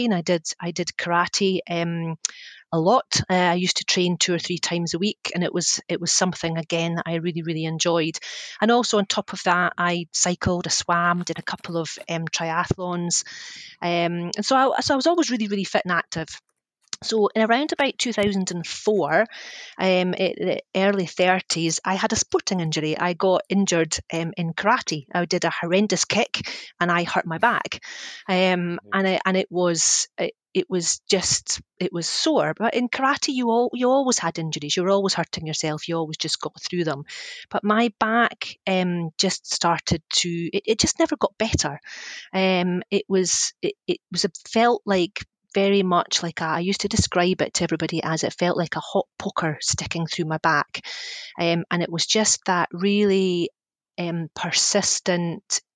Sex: female